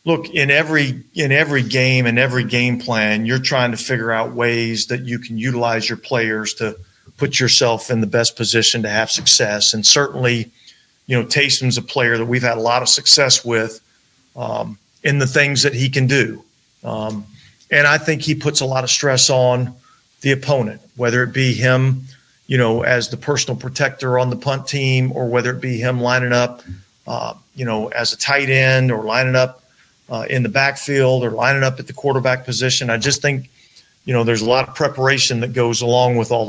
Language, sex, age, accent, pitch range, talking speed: English, male, 40-59, American, 115-135 Hz, 205 wpm